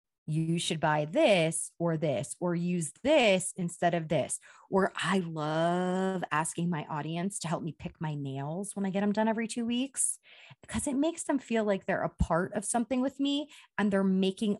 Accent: American